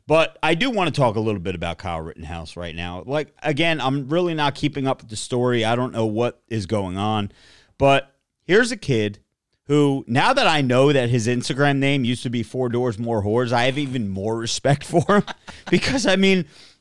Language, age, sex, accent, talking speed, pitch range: English, 30-49, male, American, 220 wpm, 125-180 Hz